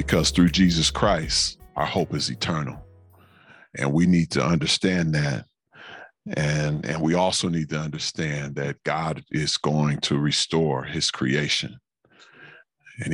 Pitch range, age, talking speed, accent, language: 75-95 Hz, 40-59, 135 wpm, American, English